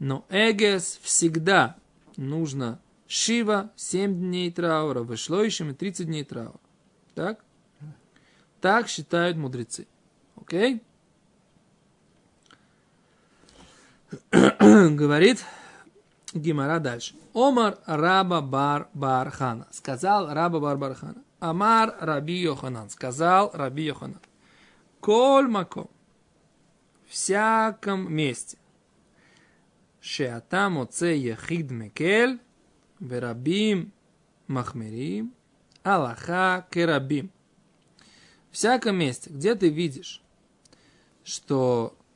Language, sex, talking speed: Russian, male, 65 wpm